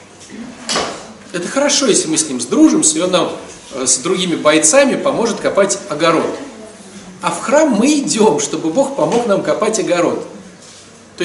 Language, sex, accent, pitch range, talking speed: Russian, male, native, 185-250 Hz, 150 wpm